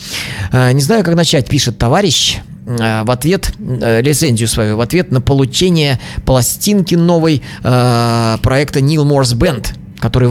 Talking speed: 120 wpm